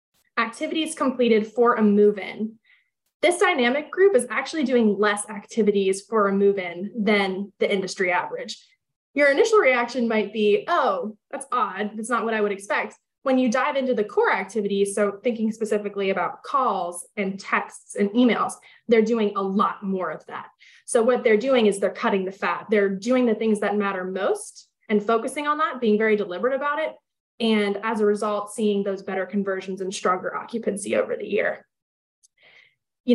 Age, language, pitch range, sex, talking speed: 20-39, English, 200-240 Hz, female, 180 wpm